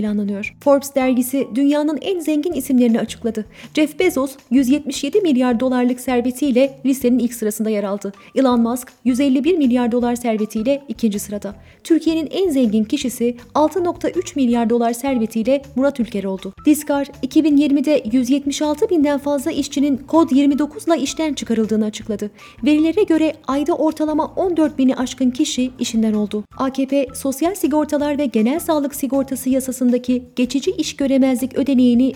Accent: native